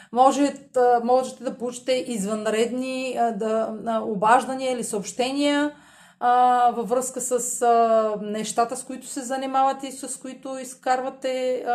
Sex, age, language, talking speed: female, 30-49, Bulgarian, 90 wpm